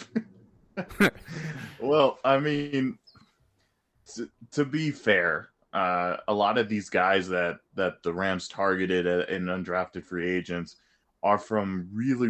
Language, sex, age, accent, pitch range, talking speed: English, male, 20-39, American, 95-110 Hz, 120 wpm